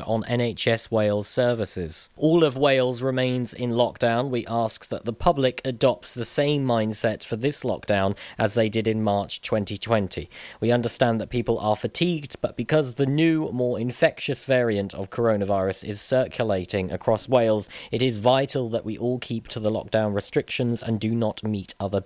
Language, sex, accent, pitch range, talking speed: English, male, British, 105-130 Hz, 170 wpm